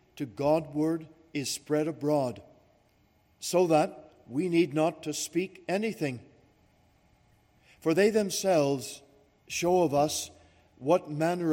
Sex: male